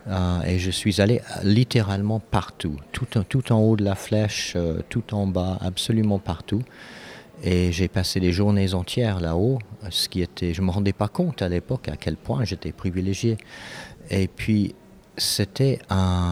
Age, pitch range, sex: 50-69, 90-120 Hz, male